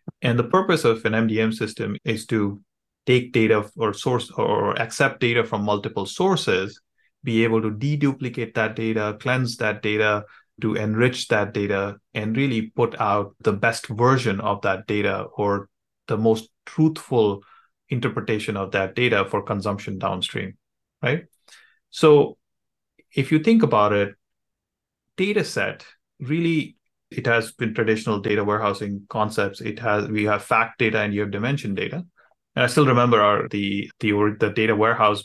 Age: 30-49